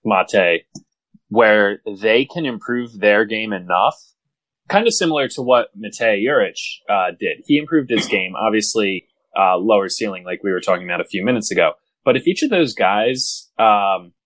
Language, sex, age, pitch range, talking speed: English, male, 20-39, 100-140 Hz, 175 wpm